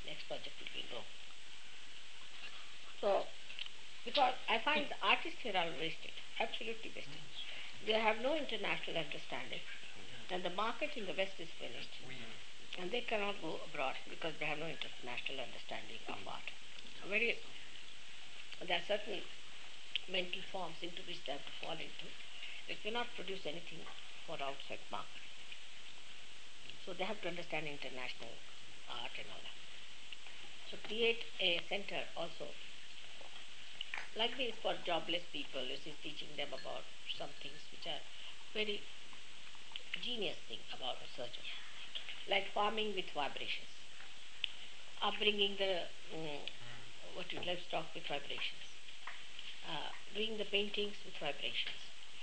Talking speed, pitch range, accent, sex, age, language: 130 wpm, 170-220 Hz, Indian, female, 60-79, English